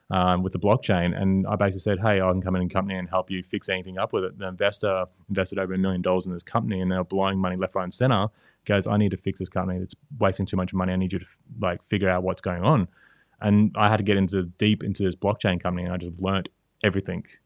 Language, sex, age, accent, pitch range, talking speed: English, male, 20-39, Australian, 95-115 Hz, 270 wpm